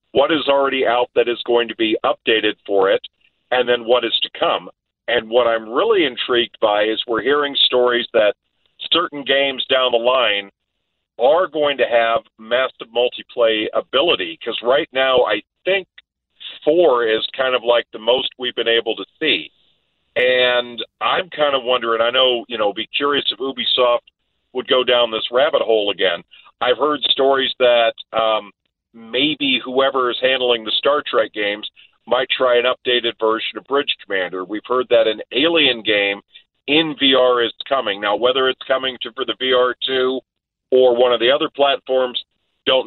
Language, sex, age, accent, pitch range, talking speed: English, male, 50-69, American, 115-135 Hz, 170 wpm